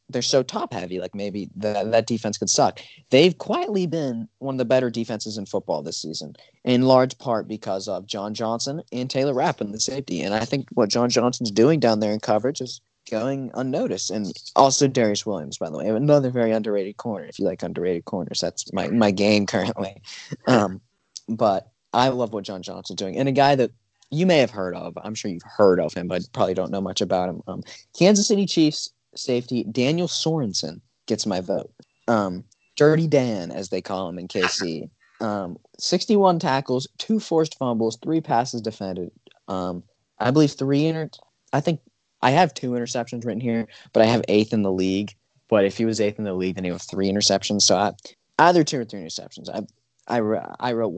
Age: 20-39